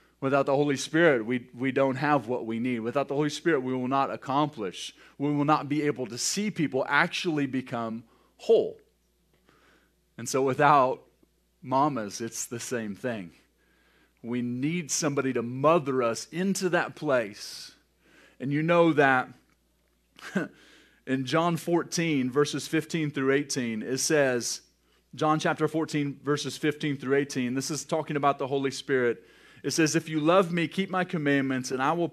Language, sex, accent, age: English, male, American, 30-49